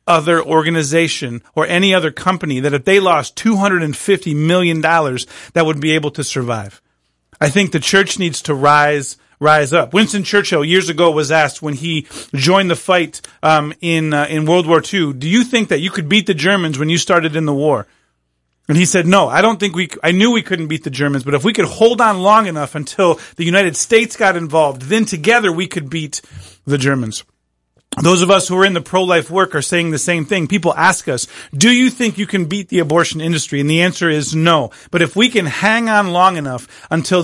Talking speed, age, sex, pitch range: 220 wpm, 30-49, male, 150-190 Hz